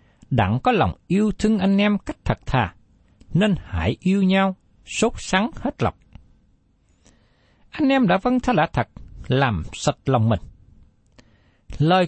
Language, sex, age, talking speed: Vietnamese, male, 60-79, 150 wpm